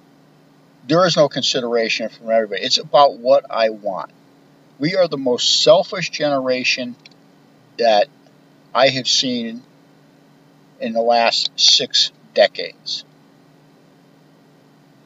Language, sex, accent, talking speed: English, male, American, 105 wpm